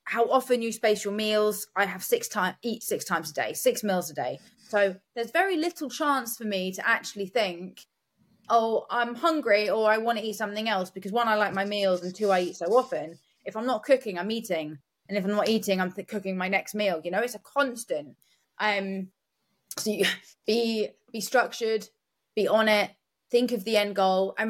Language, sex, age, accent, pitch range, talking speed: English, female, 20-39, British, 190-265 Hz, 210 wpm